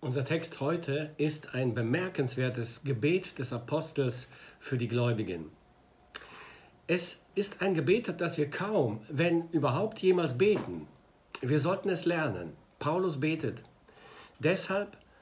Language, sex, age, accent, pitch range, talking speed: German, male, 60-79, German, 130-180 Hz, 120 wpm